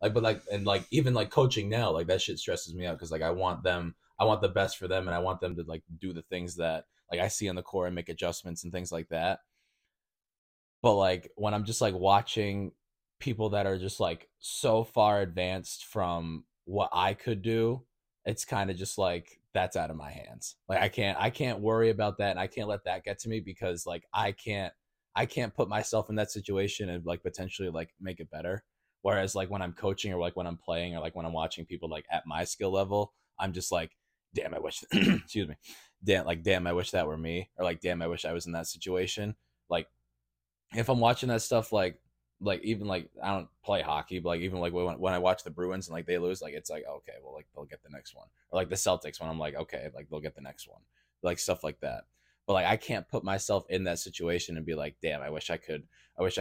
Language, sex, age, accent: English, male, 20-39, American